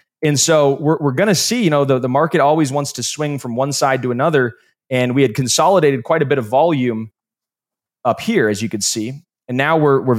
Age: 20-39